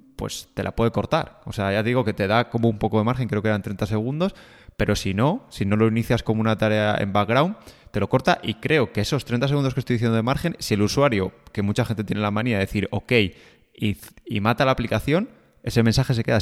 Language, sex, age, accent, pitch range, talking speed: Spanish, male, 20-39, Spanish, 105-130 Hz, 250 wpm